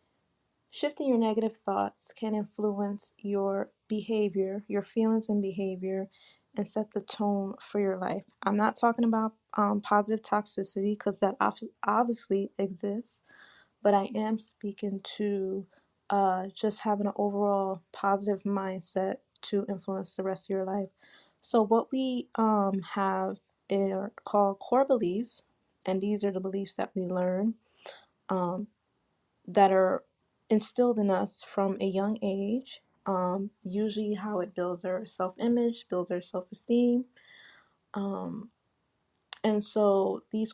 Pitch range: 190-220 Hz